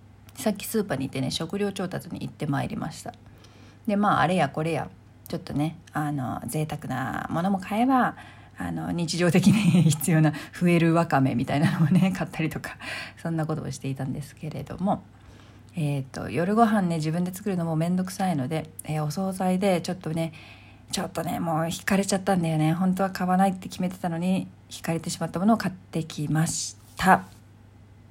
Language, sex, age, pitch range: Japanese, female, 40-59, 140-195 Hz